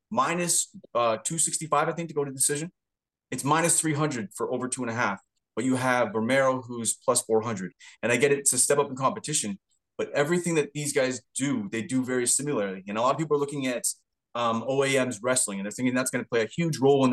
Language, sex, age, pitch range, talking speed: English, male, 20-39, 125-150 Hz, 245 wpm